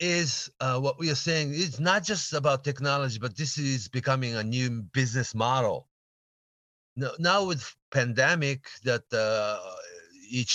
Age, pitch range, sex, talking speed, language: 40-59, 90-125 Hz, male, 150 wpm, English